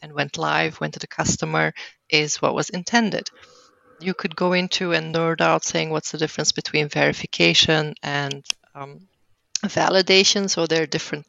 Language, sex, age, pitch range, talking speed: English, female, 30-49, 155-185 Hz, 165 wpm